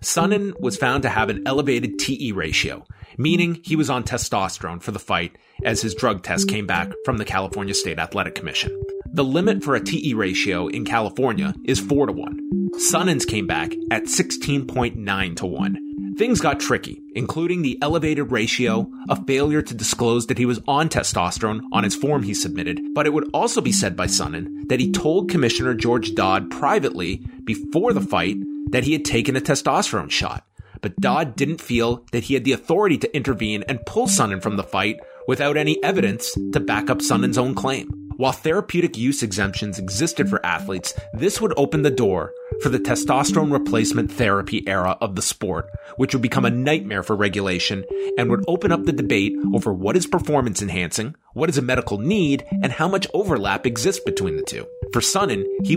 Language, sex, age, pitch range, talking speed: English, male, 30-49, 100-155 Hz, 190 wpm